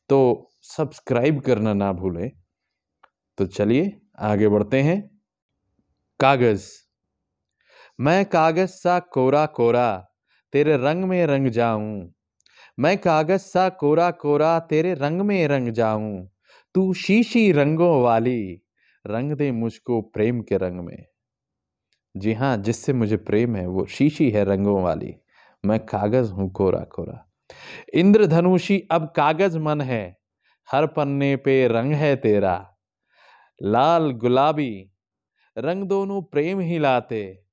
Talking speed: 120 wpm